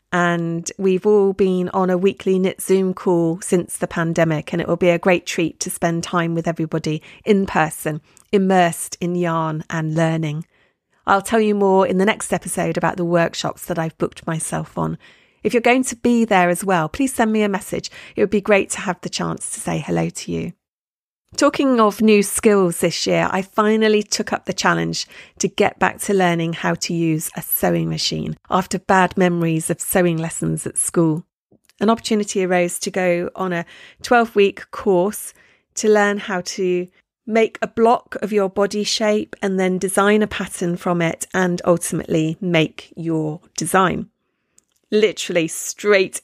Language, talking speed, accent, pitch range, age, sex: English, 180 wpm, British, 170-205 Hz, 40-59, female